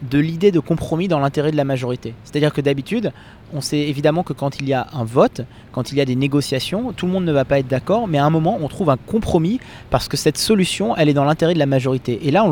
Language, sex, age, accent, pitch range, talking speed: French, male, 30-49, French, 135-170 Hz, 290 wpm